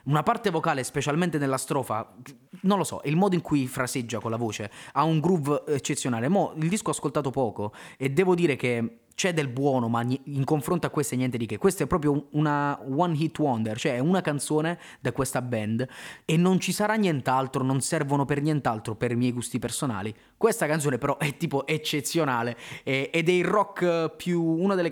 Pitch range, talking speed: 120-160 Hz, 205 wpm